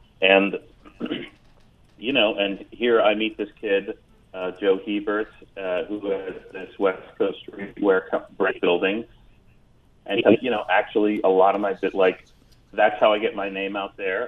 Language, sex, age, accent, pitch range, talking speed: English, male, 30-49, American, 90-105 Hz, 155 wpm